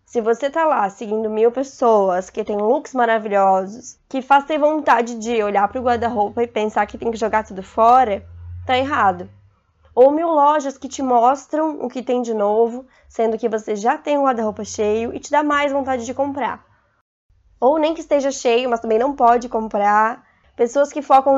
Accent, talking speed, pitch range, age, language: Brazilian, 195 wpm, 220-265 Hz, 20-39, Portuguese